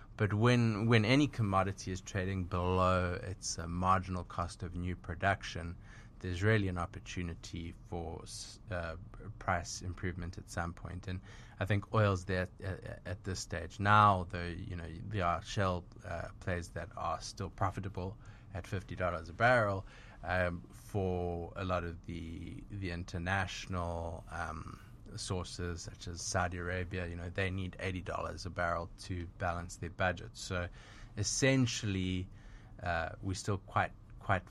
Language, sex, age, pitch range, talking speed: English, male, 20-39, 90-105 Hz, 150 wpm